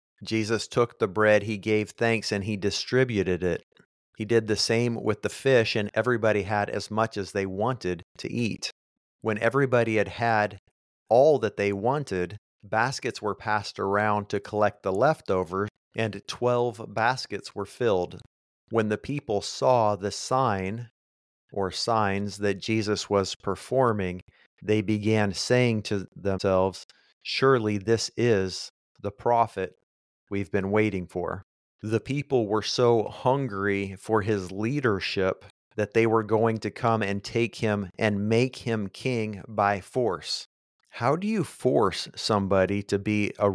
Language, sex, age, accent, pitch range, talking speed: English, male, 40-59, American, 100-115 Hz, 145 wpm